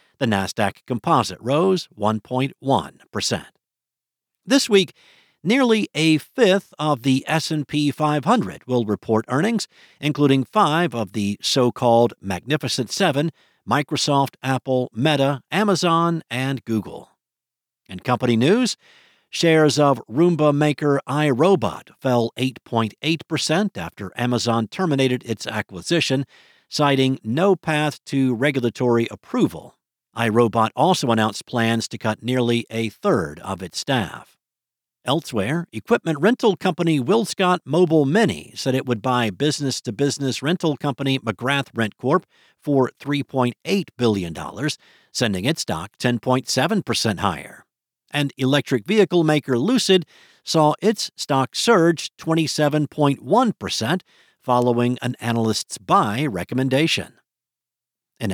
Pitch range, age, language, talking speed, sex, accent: 120-160 Hz, 50-69, English, 110 wpm, male, American